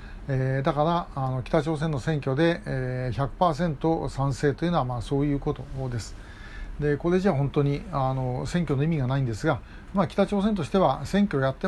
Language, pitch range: Japanese, 125-175 Hz